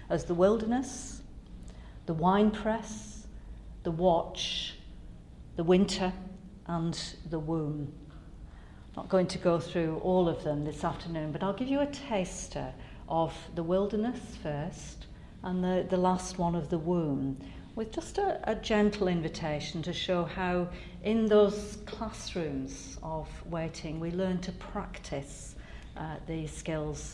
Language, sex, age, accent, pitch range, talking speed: English, female, 50-69, British, 145-185 Hz, 140 wpm